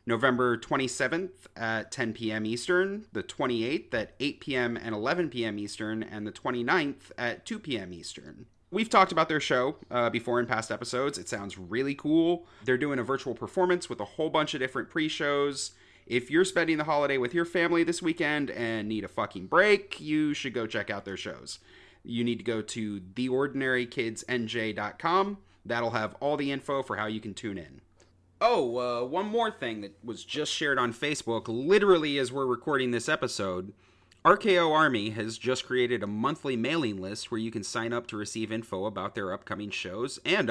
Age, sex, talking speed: 30-49, male, 185 wpm